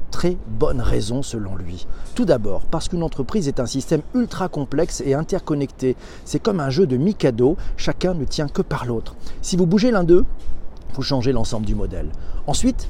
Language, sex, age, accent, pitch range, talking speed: French, male, 40-59, French, 115-165 Hz, 185 wpm